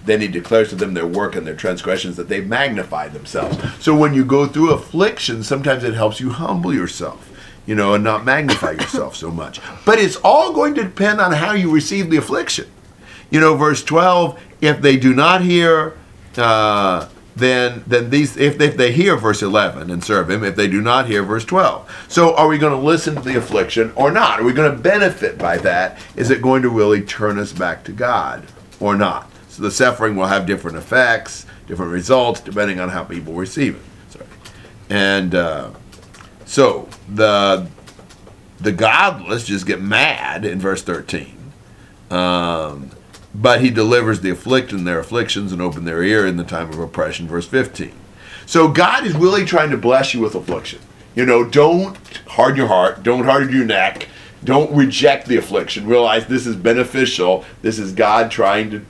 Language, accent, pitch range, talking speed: English, American, 100-140 Hz, 190 wpm